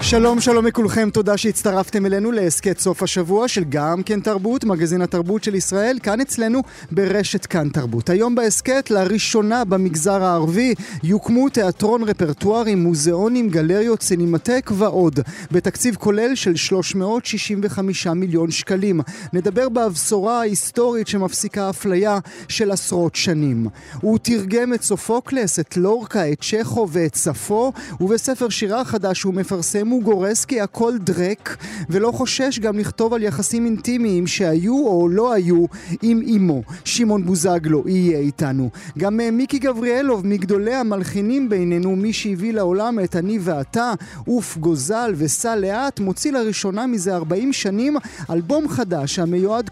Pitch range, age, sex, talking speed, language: 180-230 Hz, 30-49, male, 130 wpm, Hebrew